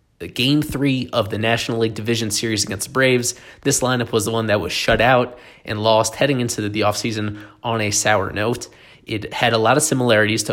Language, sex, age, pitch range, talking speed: English, male, 20-39, 105-130 Hz, 210 wpm